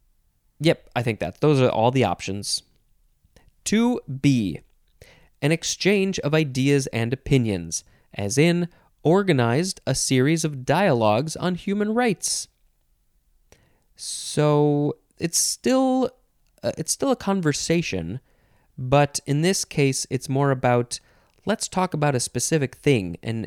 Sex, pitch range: male, 115-165 Hz